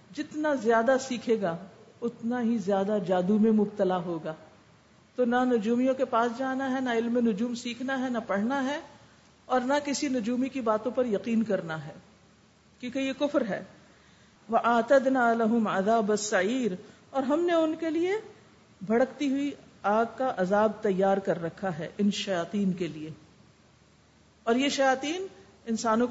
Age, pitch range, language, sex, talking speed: 50-69, 205-275 Hz, Urdu, female, 155 wpm